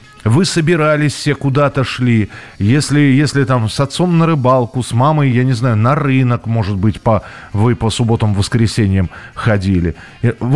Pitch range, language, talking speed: 110-140 Hz, Russian, 160 wpm